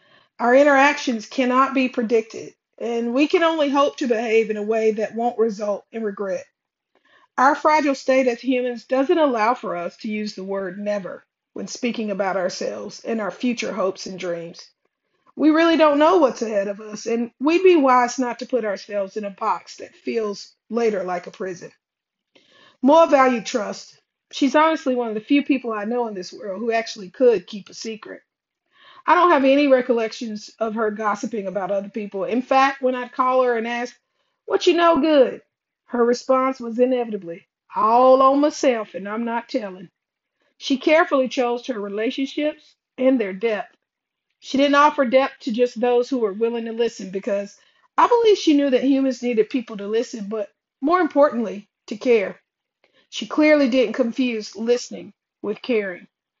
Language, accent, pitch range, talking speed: English, American, 215-275 Hz, 180 wpm